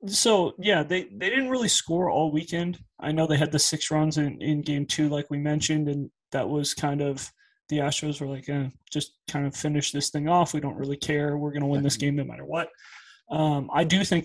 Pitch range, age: 145-170 Hz, 20-39